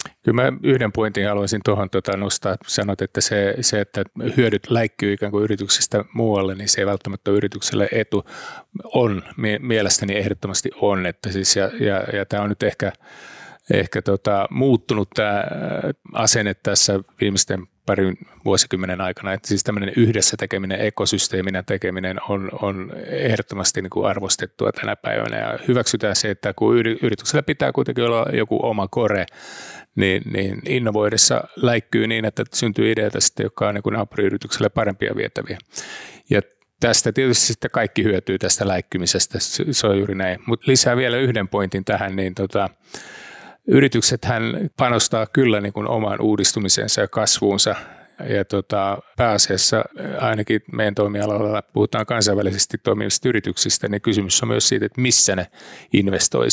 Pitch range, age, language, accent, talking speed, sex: 100-115 Hz, 30-49, Finnish, native, 145 wpm, male